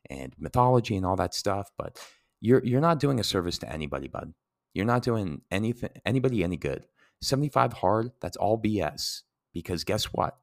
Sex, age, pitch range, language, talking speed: male, 30-49, 105-145 Hz, English, 180 wpm